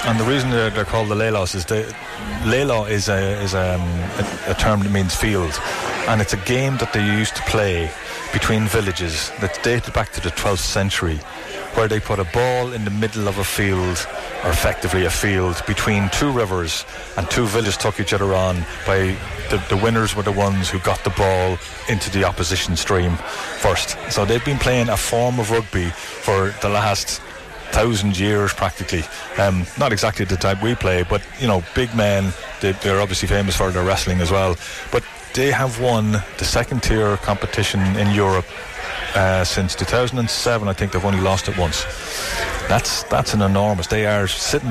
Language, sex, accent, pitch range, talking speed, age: English, male, Irish, 95-110 Hz, 195 wpm, 30-49